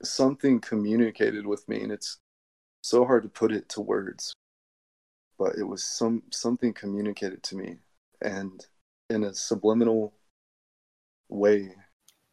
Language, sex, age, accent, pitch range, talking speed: English, male, 20-39, American, 95-110 Hz, 125 wpm